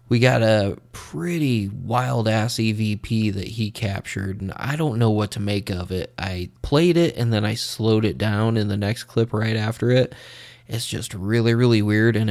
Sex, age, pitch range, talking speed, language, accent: male, 20-39, 105-125 Hz, 200 wpm, English, American